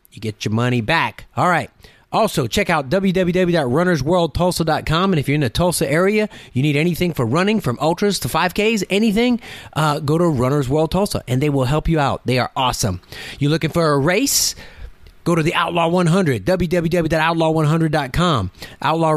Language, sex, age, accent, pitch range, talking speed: English, male, 30-49, American, 140-180 Hz, 170 wpm